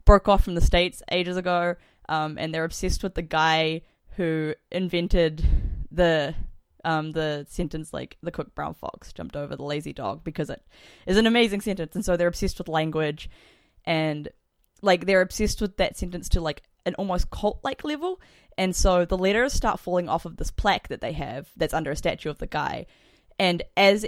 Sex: female